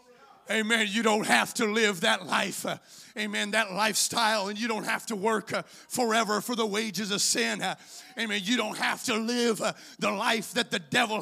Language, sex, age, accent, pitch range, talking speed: English, male, 40-59, American, 220-265 Hz, 205 wpm